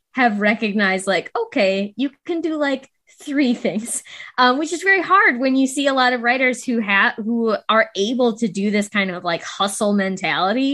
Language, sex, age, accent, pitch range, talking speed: English, female, 10-29, American, 195-250 Hz, 195 wpm